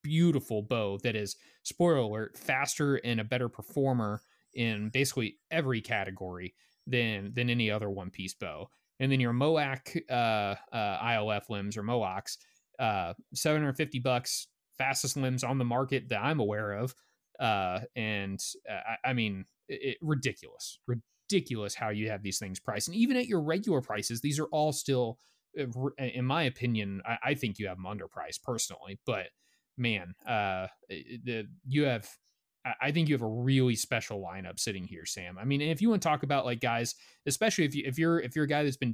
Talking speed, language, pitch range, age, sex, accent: 180 wpm, English, 110-145 Hz, 30-49, male, American